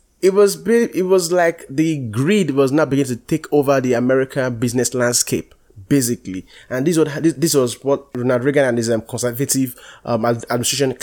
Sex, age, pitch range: male, 20-39, 120-145 Hz